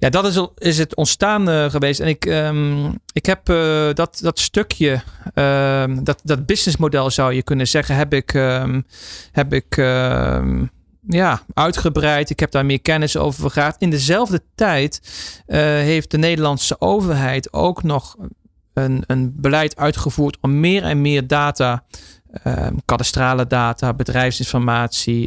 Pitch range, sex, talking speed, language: 125-155 Hz, male, 145 wpm, Dutch